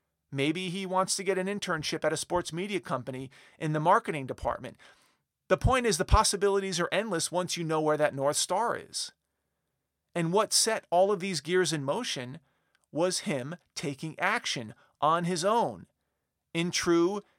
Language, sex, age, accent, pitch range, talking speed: English, male, 40-59, American, 155-190 Hz, 170 wpm